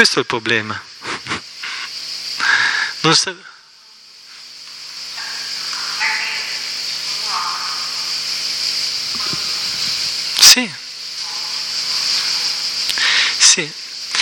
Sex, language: male, Italian